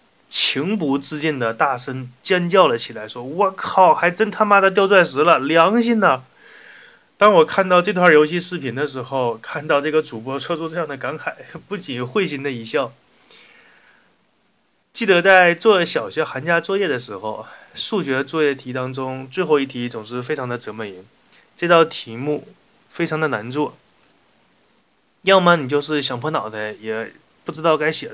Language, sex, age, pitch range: Chinese, male, 20-39, 120-155 Hz